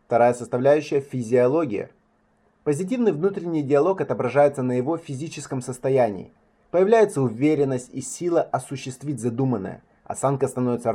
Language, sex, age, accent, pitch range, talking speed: Russian, male, 20-39, native, 125-170 Hz, 105 wpm